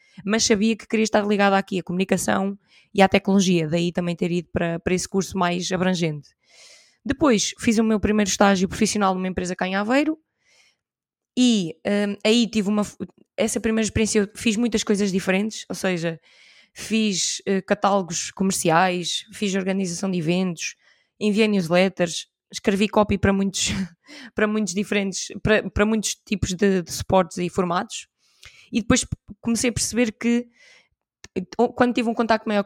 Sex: female